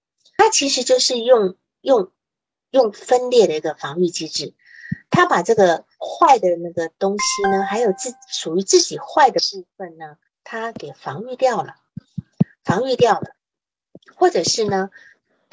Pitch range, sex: 175-260 Hz, female